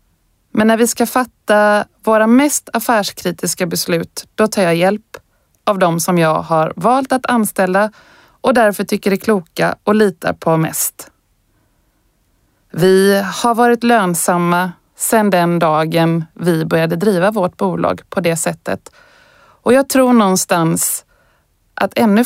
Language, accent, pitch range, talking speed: Swedish, native, 175-225 Hz, 140 wpm